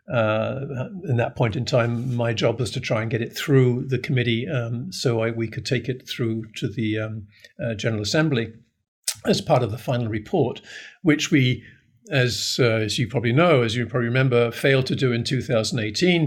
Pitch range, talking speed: 115-140 Hz, 200 wpm